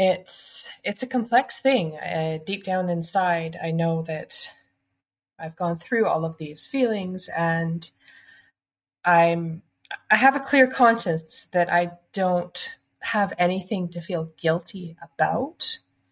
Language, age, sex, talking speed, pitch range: English, 30-49, female, 130 wpm, 155-190 Hz